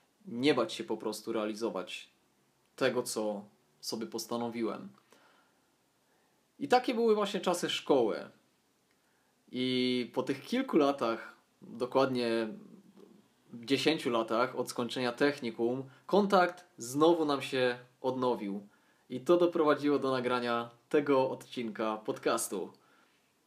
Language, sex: Polish, male